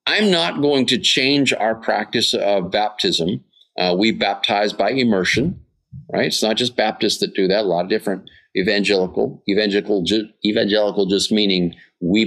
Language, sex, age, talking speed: English, male, 50-69, 150 wpm